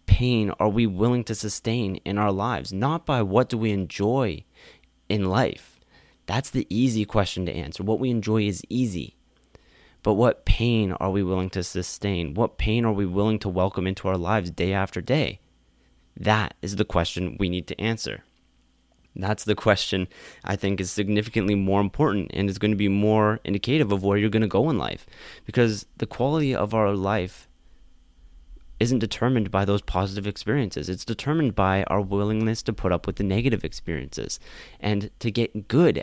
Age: 30-49